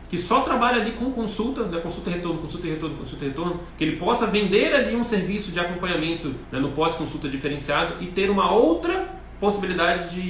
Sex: male